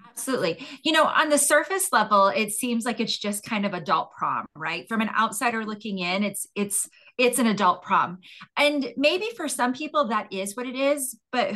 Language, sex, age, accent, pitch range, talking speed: English, female, 20-39, American, 195-245 Hz, 200 wpm